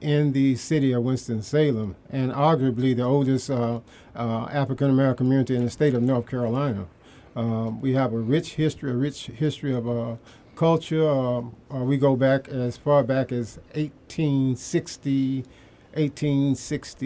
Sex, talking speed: male, 145 wpm